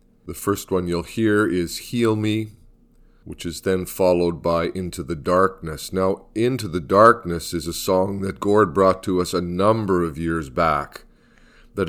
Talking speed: 170 wpm